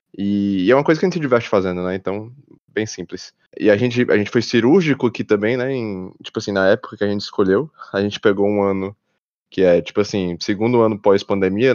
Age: 20-39